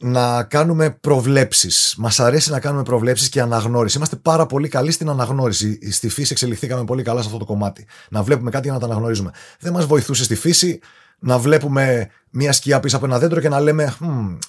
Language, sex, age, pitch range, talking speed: Greek, male, 30-49, 125-180 Hz, 205 wpm